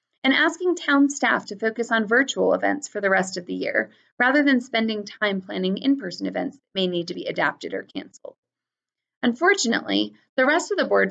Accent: American